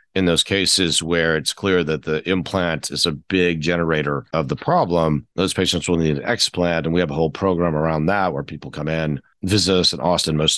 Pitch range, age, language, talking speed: 80-95 Hz, 40-59, English, 220 wpm